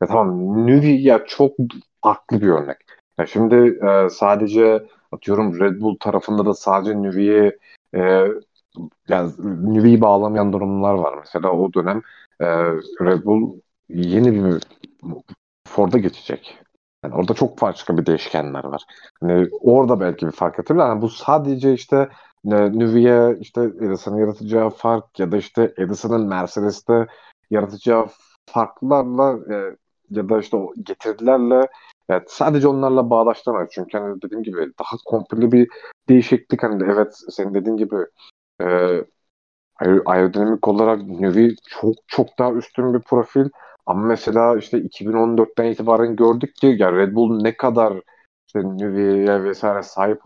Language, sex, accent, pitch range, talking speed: Turkish, male, native, 100-120 Hz, 135 wpm